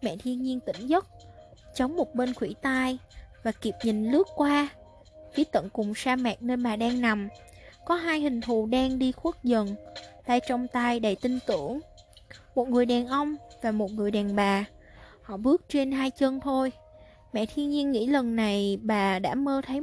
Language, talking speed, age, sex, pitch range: Vietnamese, 190 wpm, 20-39, female, 215-290 Hz